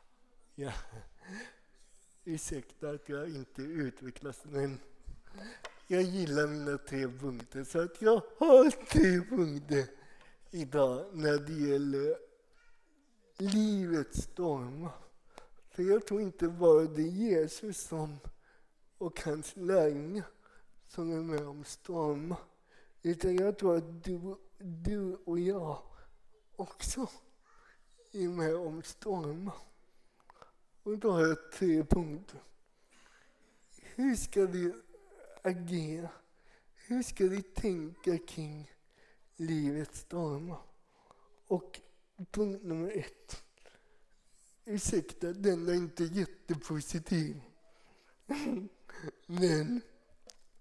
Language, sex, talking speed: Swedish, male, 95 wpm